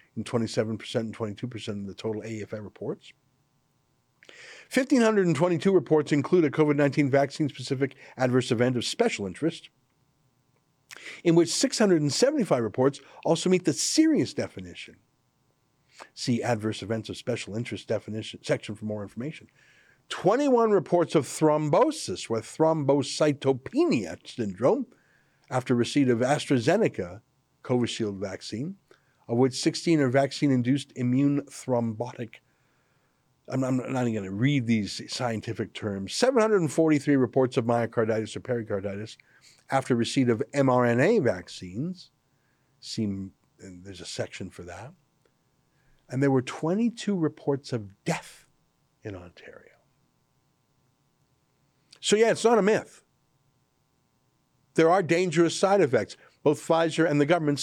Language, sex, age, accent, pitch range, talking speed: English, male, 50-69, American, 120-155 Hz, 115 wpm